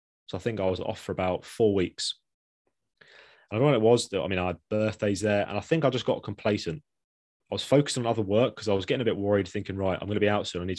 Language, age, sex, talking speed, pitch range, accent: English, 20-39, male, 290 wpm, 95-110 Hz, British